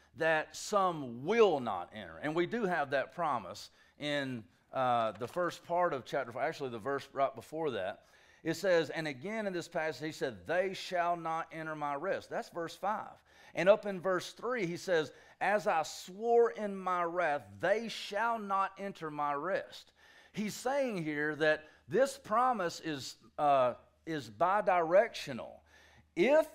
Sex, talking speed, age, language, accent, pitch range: male, 165 wpm, 40-59, English, American, 145-210 Hz